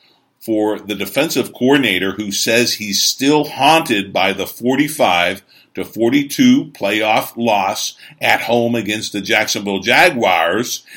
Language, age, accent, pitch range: English, 50-69, American, 105-150 Hz